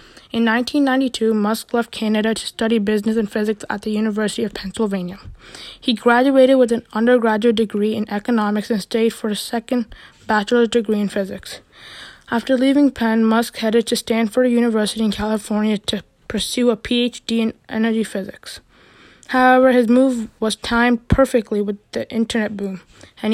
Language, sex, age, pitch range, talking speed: English, female, 20-39, 215-240 Hz, 155 wpm